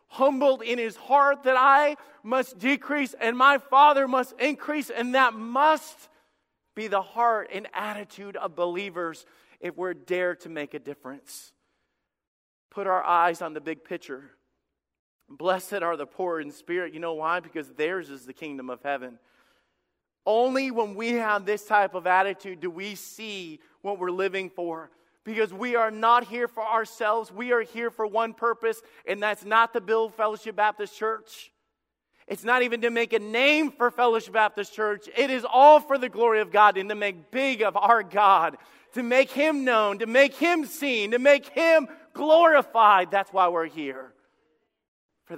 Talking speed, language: 175 wpm, English